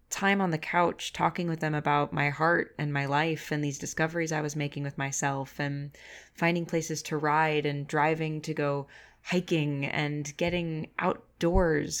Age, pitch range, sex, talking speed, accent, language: 20-39, 150-185 Hz, female, 170 wpm, American, English